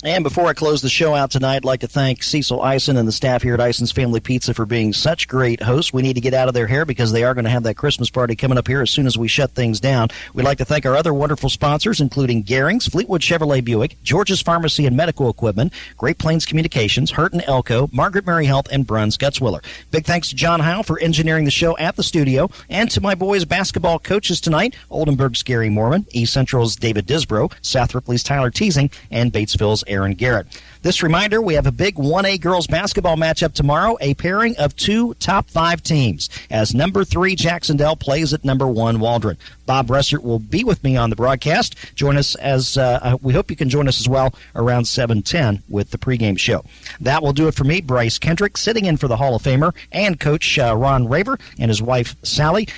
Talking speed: 220 wpm